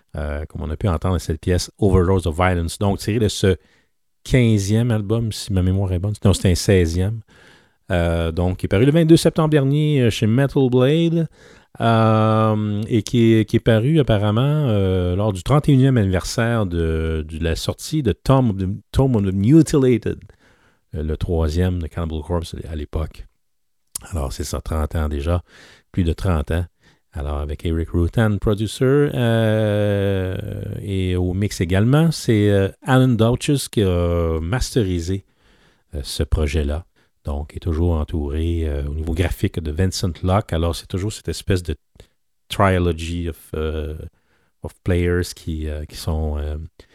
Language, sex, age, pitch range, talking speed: English, male, 40-59, 85-110 Hz, 160 wpm